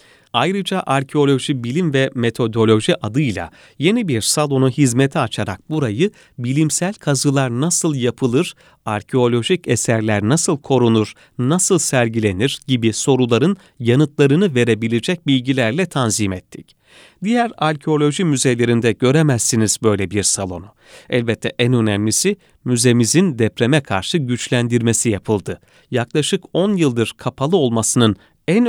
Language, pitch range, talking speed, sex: Turkish, 115-155 Hz, 105 wpm, male